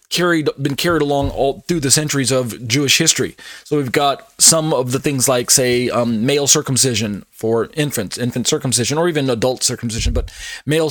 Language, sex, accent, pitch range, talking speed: English, male, American, 125-150 Hz, 180 wpm